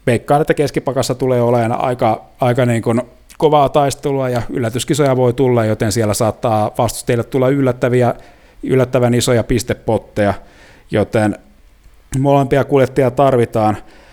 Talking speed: 115 wpm